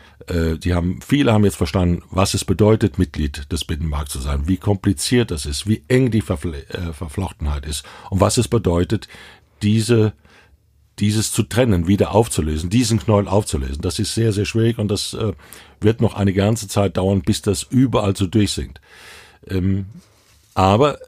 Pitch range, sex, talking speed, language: 95-115 Hz, male, 170 wpm, German